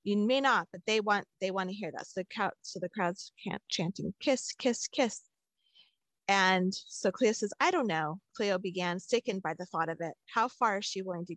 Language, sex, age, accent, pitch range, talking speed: English, female, 40-59, American, 175-220 Hz, 225 wpm